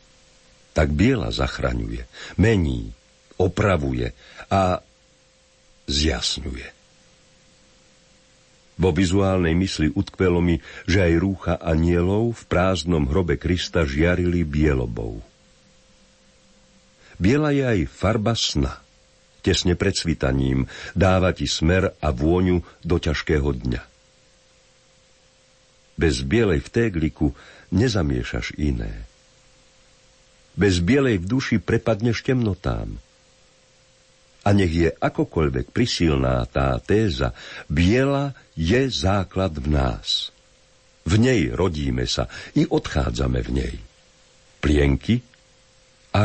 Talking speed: 95 wpm